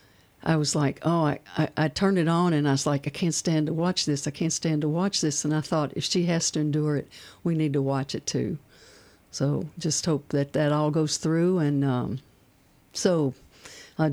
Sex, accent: female, American